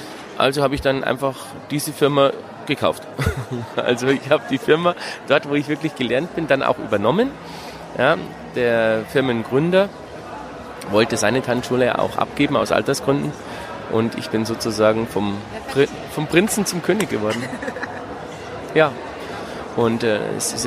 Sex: male